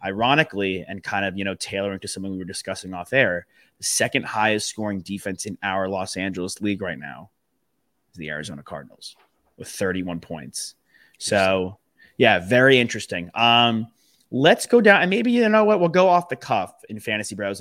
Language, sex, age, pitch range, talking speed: English, male, 30-49, 95-115 Hz, 180 wpm